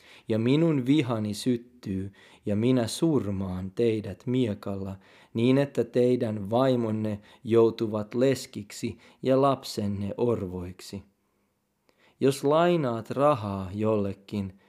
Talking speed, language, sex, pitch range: 90 wpm, Finnish, male, 100-125 Hz